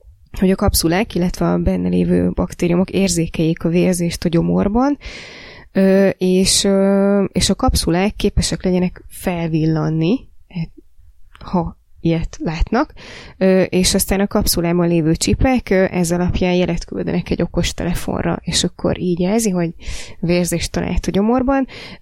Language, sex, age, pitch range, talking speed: Hungarian, female, 20-39, 175-195 Hz, 115 wpm